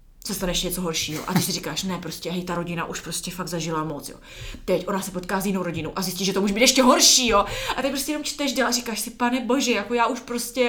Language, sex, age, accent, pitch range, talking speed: Czech, female, 20-39, native, 180-255 Hz, 280 wpm